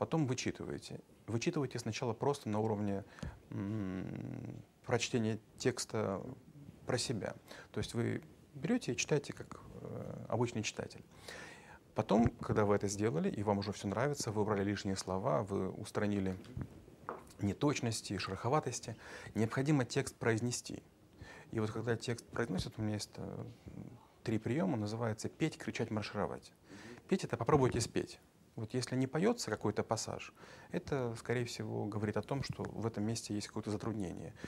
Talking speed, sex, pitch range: 145 wpm, male, 105-125 Hz